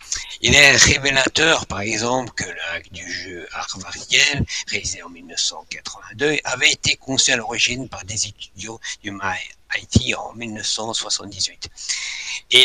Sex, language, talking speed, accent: male, French, 125 wpm, French